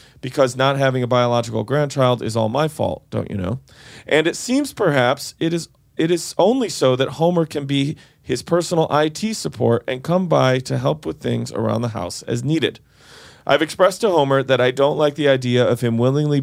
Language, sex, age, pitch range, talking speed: English, male, 40-59, 120-145 Hz, 205 wpm